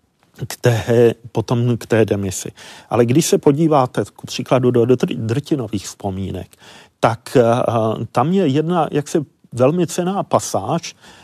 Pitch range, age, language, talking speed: 120-155 Hz, 40-59, Czech, 140 wpm